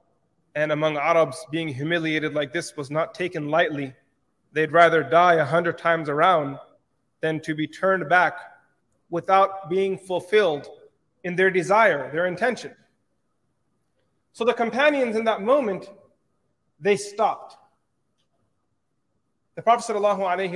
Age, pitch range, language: 30-49, 160-235 Hz, English